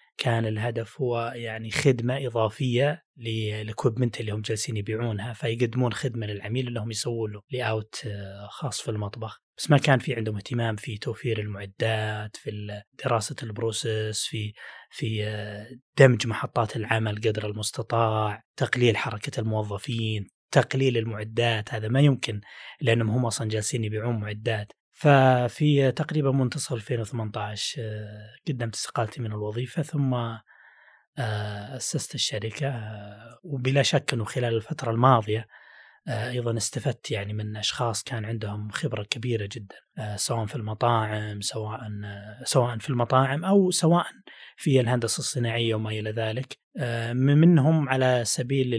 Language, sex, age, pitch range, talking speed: Arabic, male, 20-39, 110-130 Hz, 120 wpm